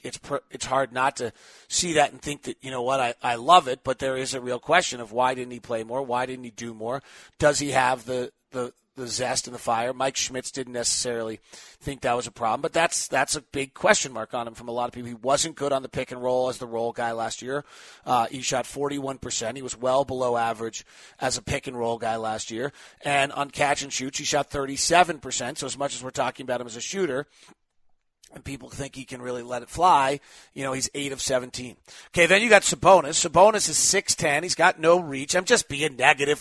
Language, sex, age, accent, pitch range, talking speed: English, male, 30-49, American, 125-160 Hz, 235 wpm